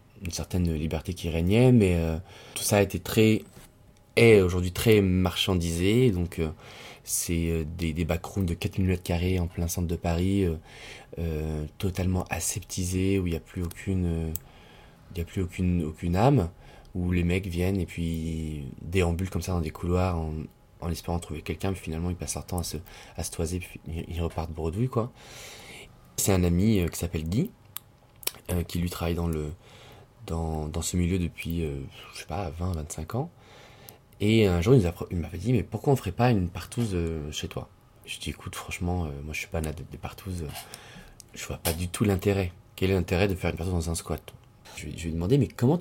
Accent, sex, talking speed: French, male, 215 wpm